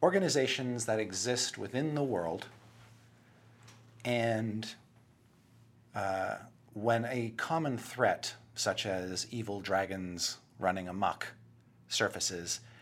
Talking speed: 90 wpm